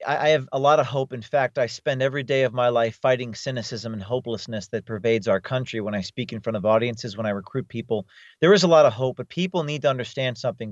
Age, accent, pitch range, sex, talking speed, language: 40-59, American, 125-165 Hz, male, 260 wpm, English